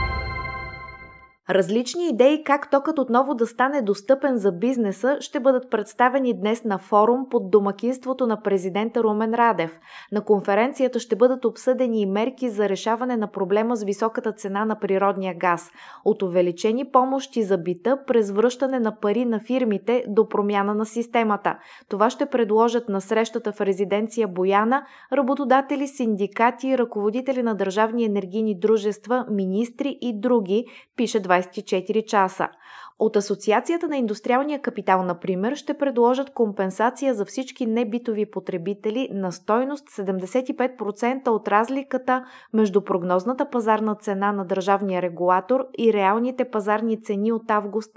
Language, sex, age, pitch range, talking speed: Bulgarian, female, 20-39, 200-250 Hz, 135 wpm